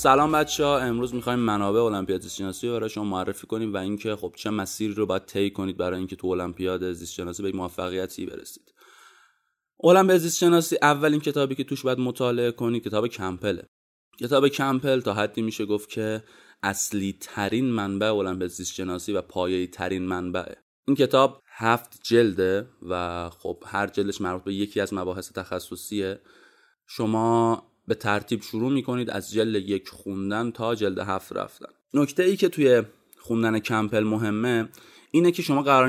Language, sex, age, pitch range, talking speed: Persian, male, 20-39, 95-125 Hz, 165 wpm